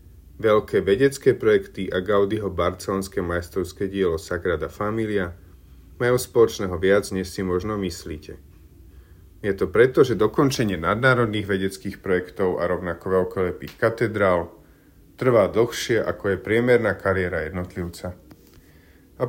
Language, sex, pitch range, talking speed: Slovak, male, 90-120 Hz, 115 wpm